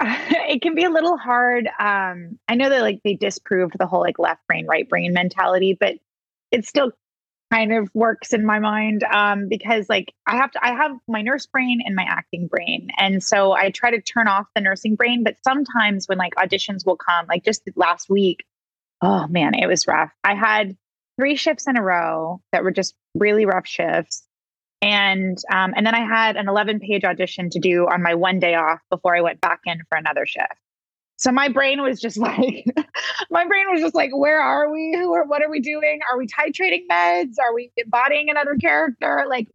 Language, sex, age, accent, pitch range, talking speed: English, female, 20-39, American, 190-255 Hz, 210 wpm